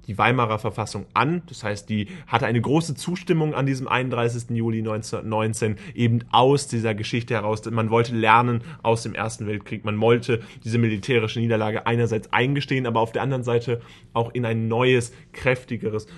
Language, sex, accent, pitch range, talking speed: German, male, German, 110-135 Hz, 165 wpm